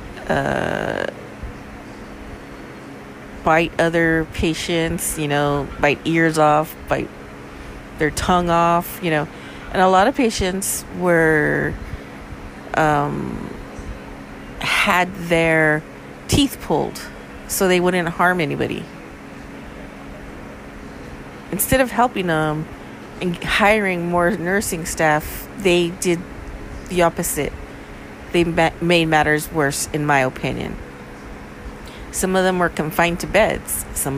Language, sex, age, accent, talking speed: English, female, 30-49, American, 105 wpm